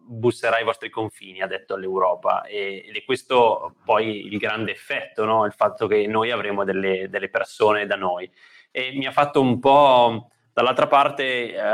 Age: 20-39